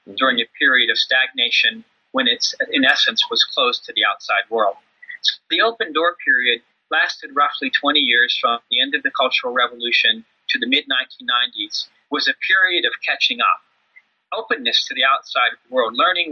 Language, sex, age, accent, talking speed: English, male, 40-59, American, 165 wpm